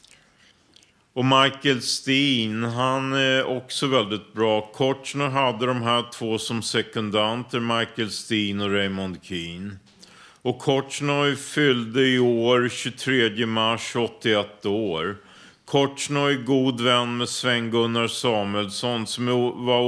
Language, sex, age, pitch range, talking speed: Swedish, male, 50-69, 105-125 Hz, 120 wpm